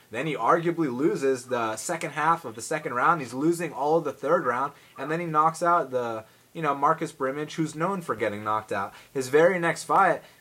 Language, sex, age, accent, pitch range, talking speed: English, male, 20-39, American, 130-175 Hz, 220 wpm